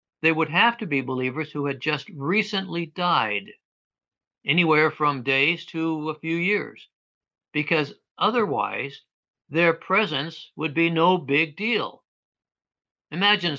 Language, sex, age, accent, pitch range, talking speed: English, male, 60-79, American, 135-170 Hz, 125 wpm